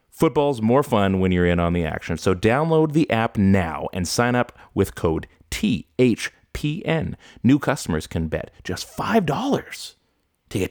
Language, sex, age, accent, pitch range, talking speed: English, male, 30-49, American, 90-125 Hz, 155 wpm